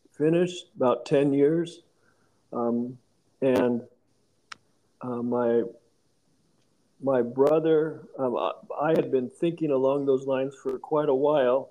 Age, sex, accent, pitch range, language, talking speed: 50-69, male, American, 120-150 Hz, English, 120 wpm